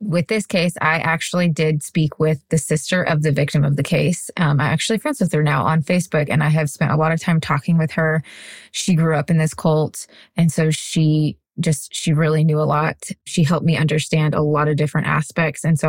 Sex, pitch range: female, 155-185 Hz